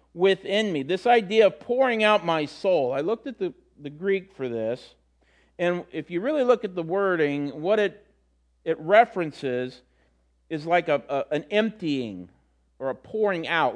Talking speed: 170 wpm